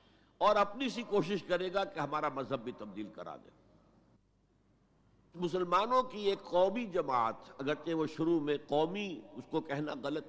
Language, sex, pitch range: Urdu, male, 130-175 Hz